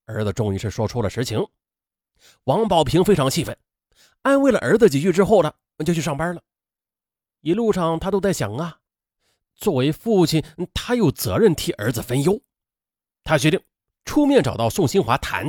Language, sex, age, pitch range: Chinese, male, 30-49, 105-175 Hz